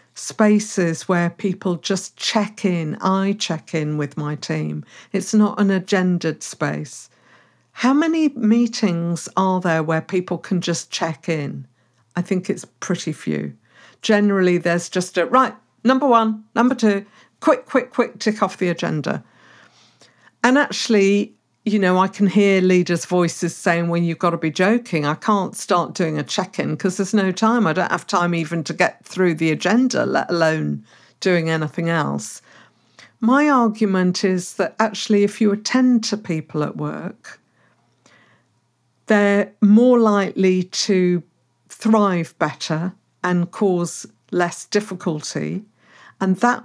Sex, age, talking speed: female, 50-69, 145 wpm